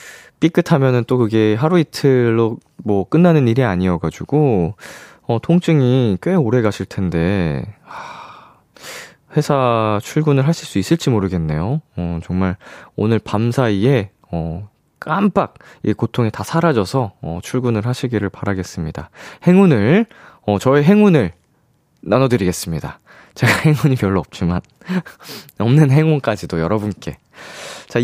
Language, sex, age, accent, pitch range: Korean, male, 20-39, native, 105-165 Hz